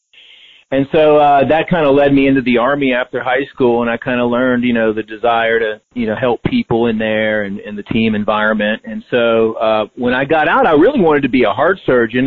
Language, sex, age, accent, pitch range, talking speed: English, male, 40-59, American, 110-125 Hz, 245 wpm